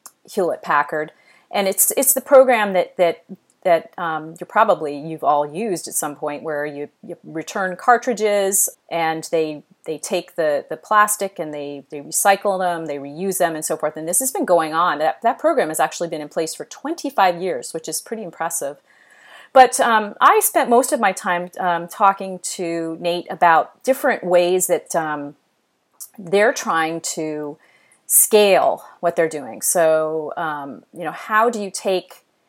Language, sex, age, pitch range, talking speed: English, female, 40-59, 155-195 Hz, 175 wpm